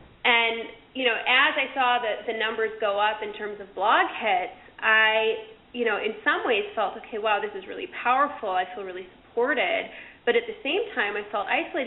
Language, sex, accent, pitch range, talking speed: English, female, American, 210-265 Hz, 205 wpm